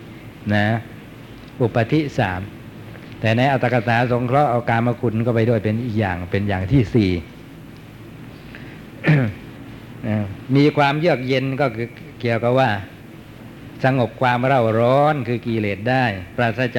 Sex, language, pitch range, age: male, Thai, 115-135 Hz, 60-79